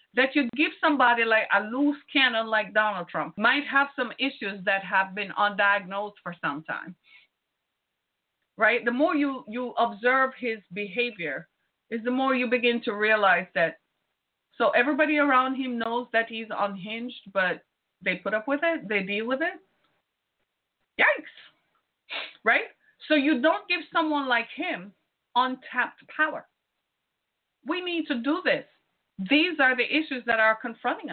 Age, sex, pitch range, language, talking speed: 30-49, female, 225-310 Hz, English, 150 wpm